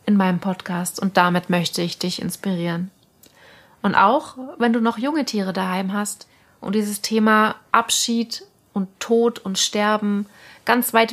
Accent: German